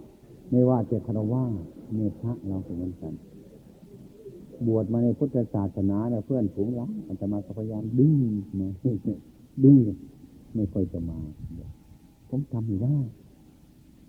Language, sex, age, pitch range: Thai, male, 60-79, 95-120 Hz